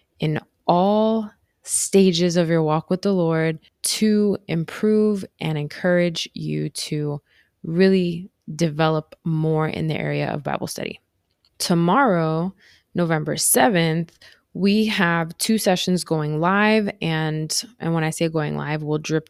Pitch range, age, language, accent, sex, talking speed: 155-190 Hz, 20-39, English, American, female, 130 wpm